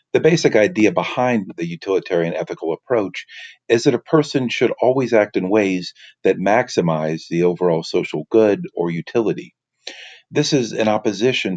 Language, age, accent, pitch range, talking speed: English, 40-59, American, 90-115 Hz, 150 wpm